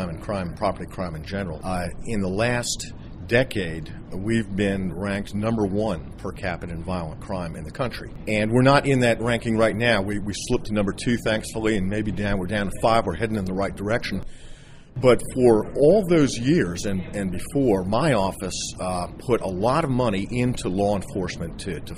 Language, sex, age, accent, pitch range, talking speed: English, male, 40-59, American, 95-120 Hz, 200 wpm